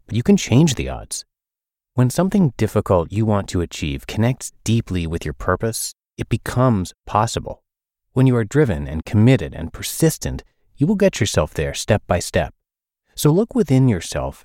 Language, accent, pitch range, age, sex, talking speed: English, American, 90-125 Hz, 30-49, male, 170 wpm